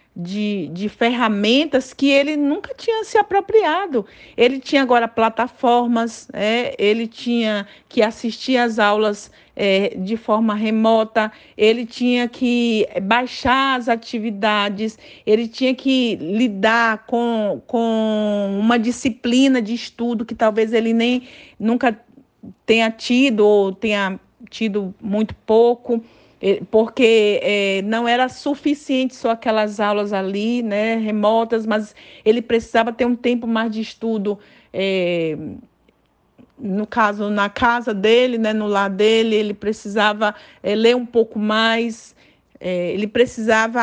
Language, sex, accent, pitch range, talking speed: Portuguese, female, Brazilian, 210-240 Hz, 120 wpm